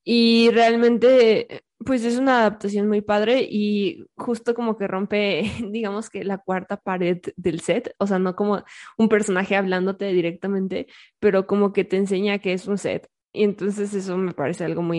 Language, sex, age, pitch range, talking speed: Spanish, female, 20-39, 180-220 Hz, 175 wpm